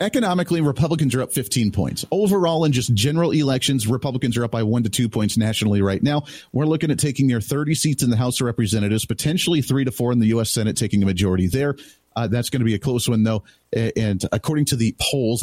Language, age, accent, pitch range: English, 40-59, American, 110-145 Hz